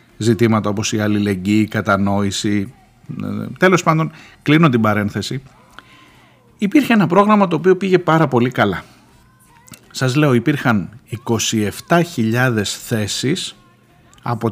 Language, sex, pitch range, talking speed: Greek, male, 105-165 Hz, 110 wpm